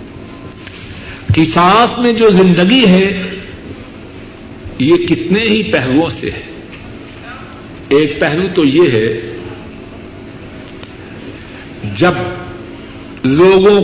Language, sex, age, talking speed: Urdu, male, 60-79, 80 wpm